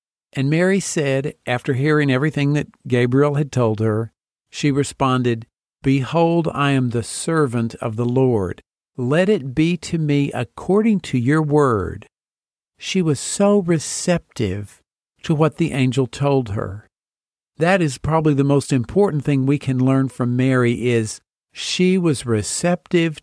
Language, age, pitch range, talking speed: English, 50-69, 125-160 Hz, 145 wpm